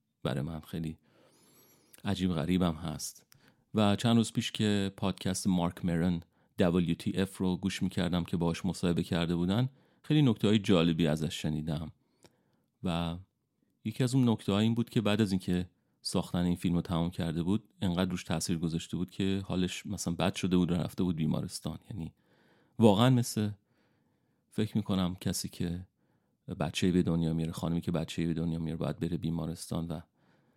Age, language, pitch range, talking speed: 40-59, Persian, 85-105 Hz, 165 wpm